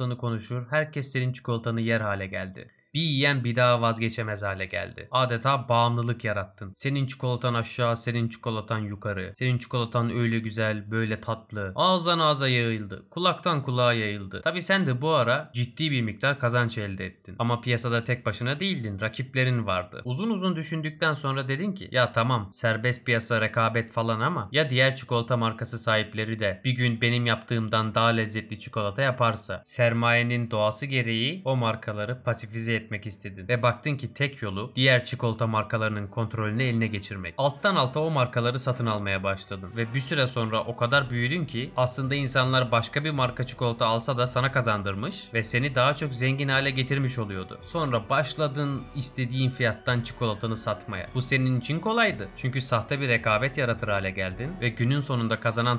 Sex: male